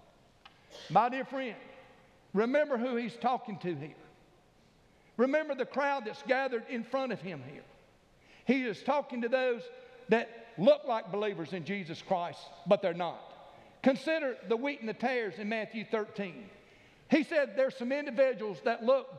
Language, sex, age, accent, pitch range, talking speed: English, male, 50-69, American, 230-290 Hz, 155 wpm